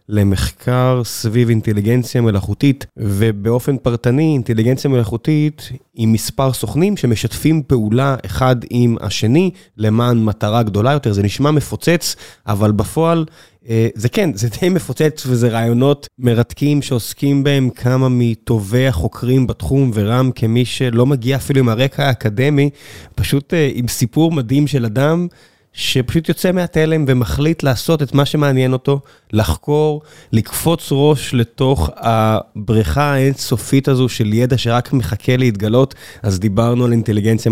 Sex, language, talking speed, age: male, Hebrew, 125 wpm, 20-39